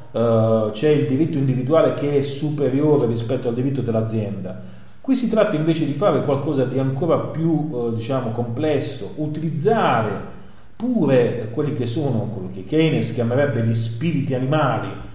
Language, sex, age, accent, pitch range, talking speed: Italian, male, 40-59, native, 115-150 Hz, 140 wpm